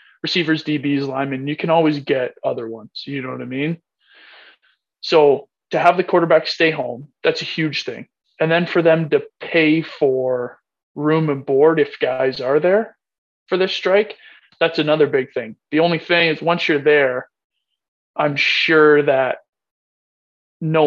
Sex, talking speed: male, 165 wpm